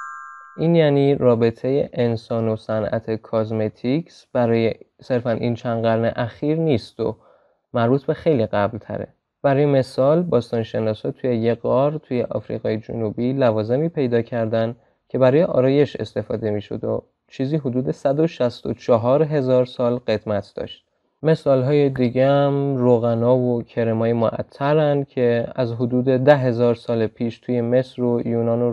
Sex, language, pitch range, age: male, Persian, 115-140 Hz, 20-39